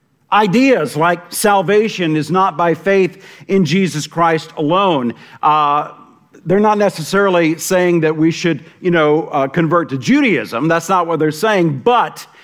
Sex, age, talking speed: male, 50-69, 150 wpm